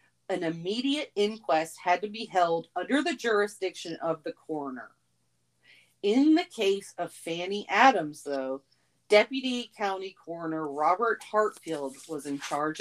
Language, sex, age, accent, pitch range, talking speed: English, female, 40-59, American, 155-205 Hz, 130 wpm